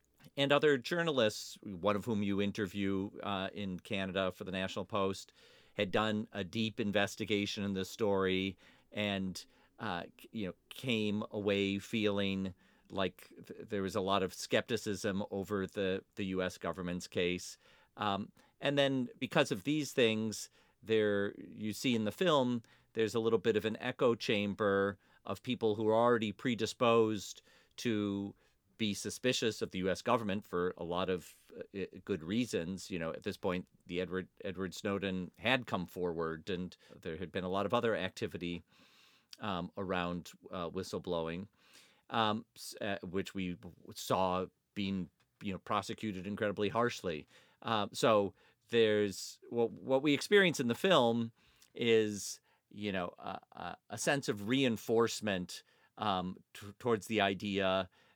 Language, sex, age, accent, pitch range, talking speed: English, male, 40-59, American, 95-115 Hz, 150 wpm